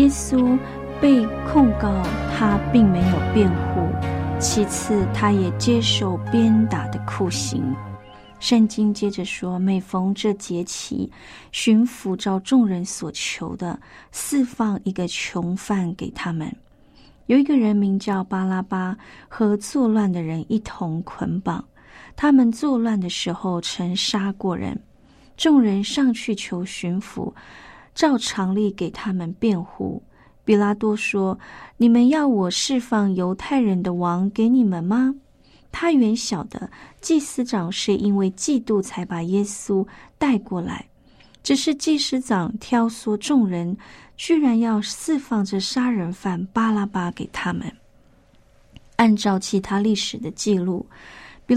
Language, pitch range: Chinese, 180-240 Hz